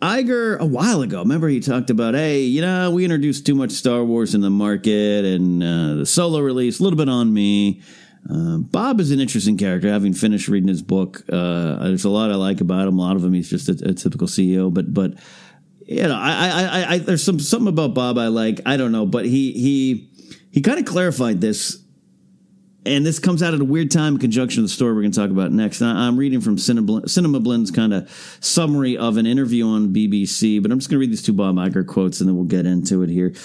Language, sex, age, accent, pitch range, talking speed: English, male, 40-59, American, 105-165 Hz, 240 wpm